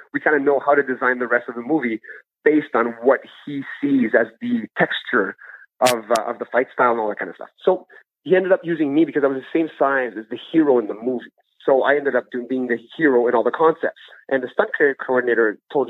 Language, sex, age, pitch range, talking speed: English, male, 30-49, 125-165 Hz, 255 wpm